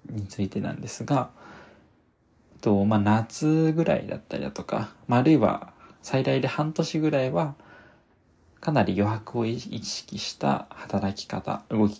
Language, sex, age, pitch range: Japanese, male, 20-39, 105-135 Hz